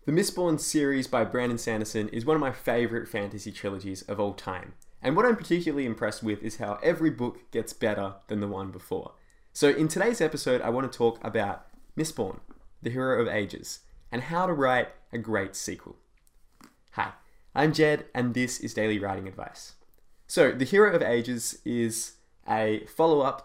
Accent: Australian